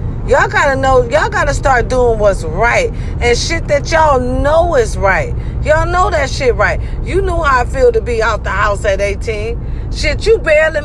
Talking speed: 210 wpm